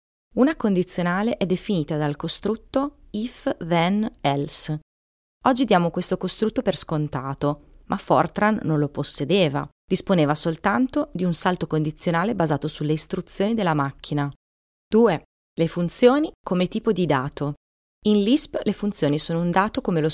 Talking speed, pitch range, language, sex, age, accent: 135 wpm, 145-200 Hz, Italian, female, 30-49, native